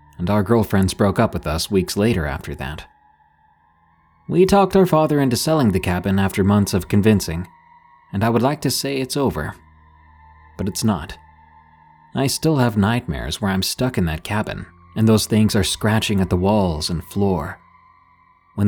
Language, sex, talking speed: English, male, 175 wpm